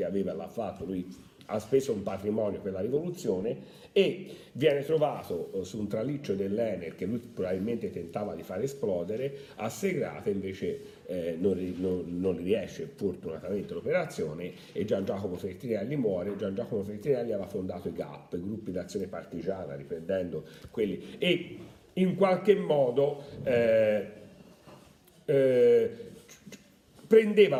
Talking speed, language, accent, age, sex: 130 wpm, Italian, native, 40-59, male